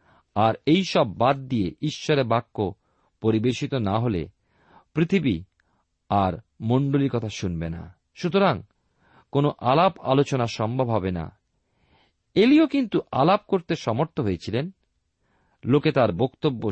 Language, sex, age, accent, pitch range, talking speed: Bengali, male, 40-59, native, 105-150 Hz, 115 wpm